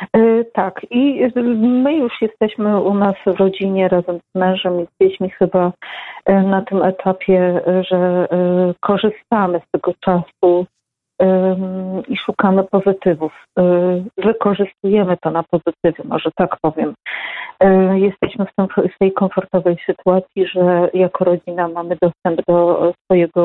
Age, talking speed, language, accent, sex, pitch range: 30-49, 115 wpm, Polish, native, female, 180-195 Hz